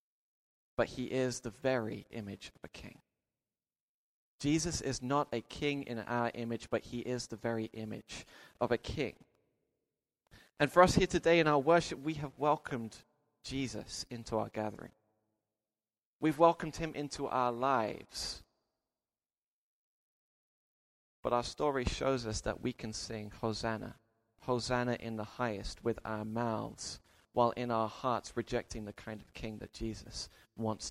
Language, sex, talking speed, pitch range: English, male, 150 wpm, 110-130 Hz